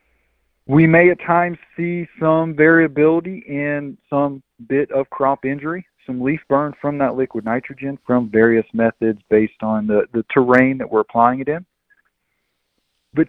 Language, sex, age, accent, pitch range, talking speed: English, male, 40-59, American, 120-155 Hz, 155 wpm